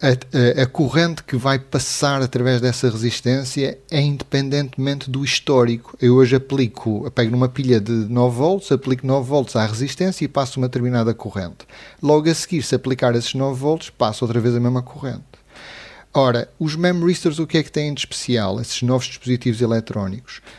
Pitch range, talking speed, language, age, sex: 120-145 Hz, 170 wpm, Portuguese, 30-49, male